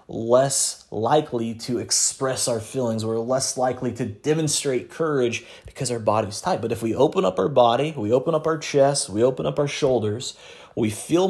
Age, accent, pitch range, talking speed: 30-49, American, 110-130 Hz, 185 wpm